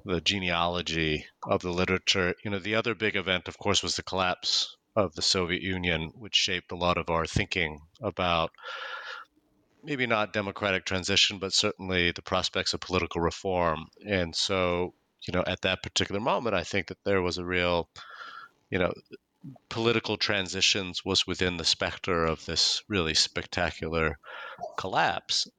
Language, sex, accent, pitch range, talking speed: English, male, American, 80-95 Hz, 155 wpm